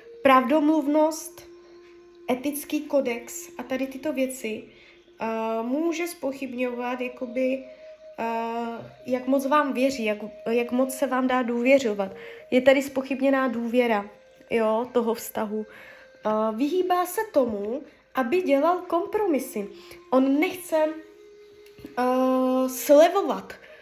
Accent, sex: native, female